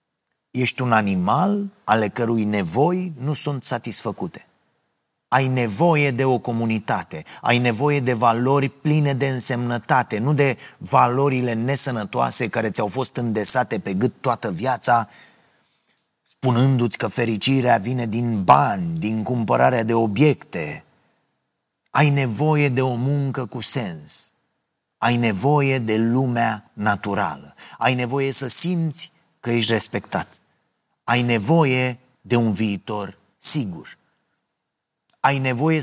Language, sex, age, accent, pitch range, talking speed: Romanian, male, 30-49, native, 115-140 Hz, 115 wpm